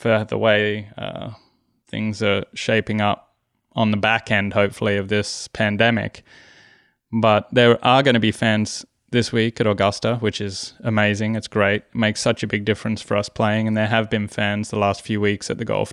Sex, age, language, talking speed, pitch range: male, 20-39, English, 200 wpm, 105-115 Hz